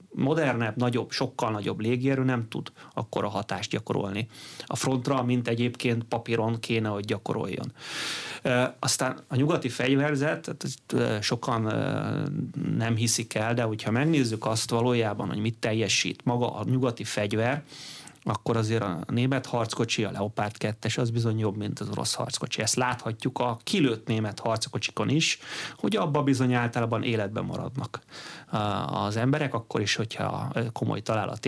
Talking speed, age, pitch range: 140 wpm, 30-49, 110-135 Hz